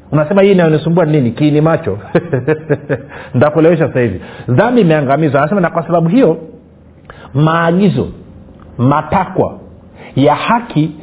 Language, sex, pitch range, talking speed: Swahili, male, 145-185 Hz, 110 wpm